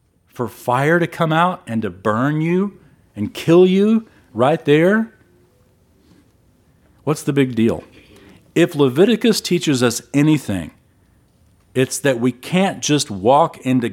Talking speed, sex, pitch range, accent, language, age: 130 wpm, male, 110-160 Hz, American, English, 40-59